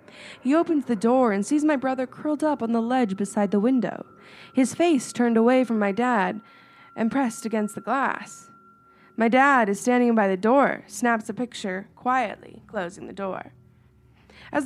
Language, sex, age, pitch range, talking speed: English, female, 20-39, 220-285 Hz, 175 wpm